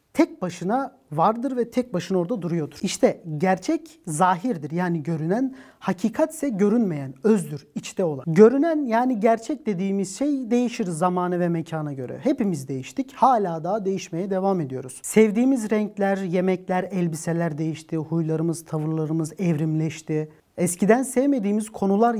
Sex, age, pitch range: male, 40-59, 170-225 Hz